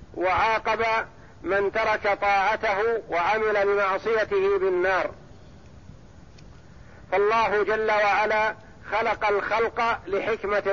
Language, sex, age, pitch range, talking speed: Arabic, male, 50-69, 200-220 Hz, 75 wpm